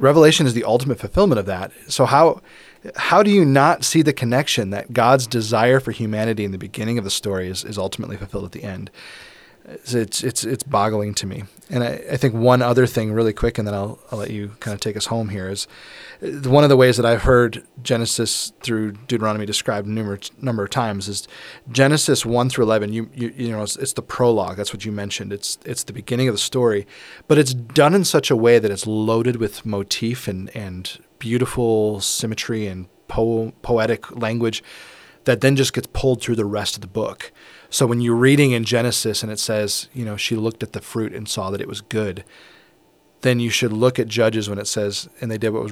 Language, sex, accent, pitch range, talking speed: English, male, American, 105-125 Hz, 220 wpm